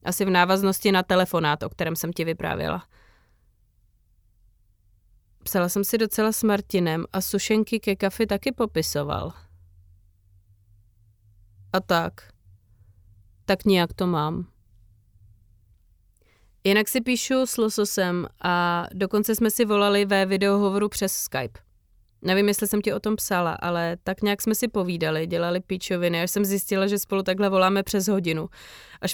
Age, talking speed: 30-49, 140 wpm